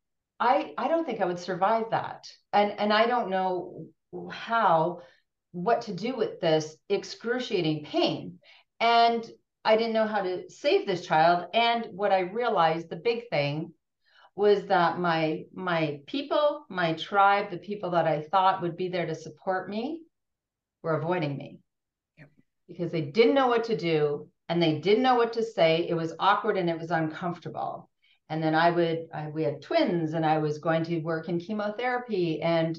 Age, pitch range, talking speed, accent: 40-59, 165-230 Hz, 175 wpm, American